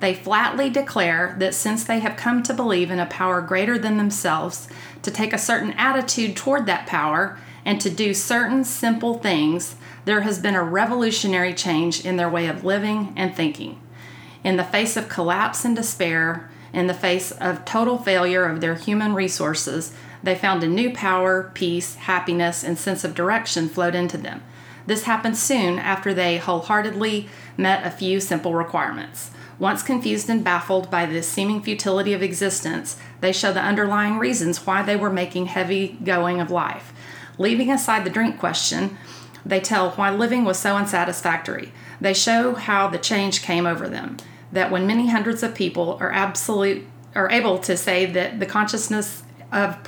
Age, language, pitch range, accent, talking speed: 40-59, English, 180-215 Hz, American, 175 wpm